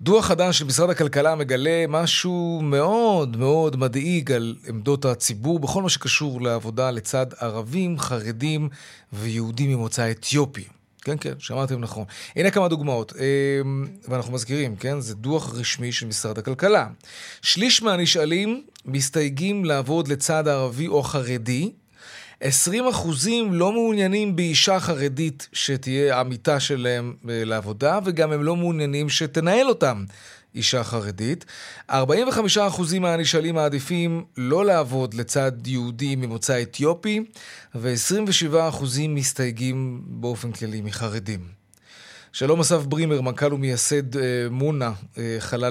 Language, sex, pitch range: Hebrew, male, 120-160 Hz